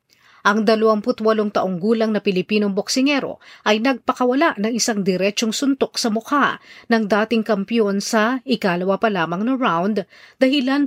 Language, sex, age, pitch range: Filipino, female, 40-59, 185-240 Hz